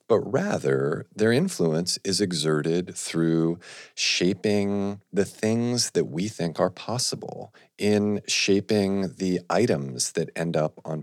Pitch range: 75-90 Hz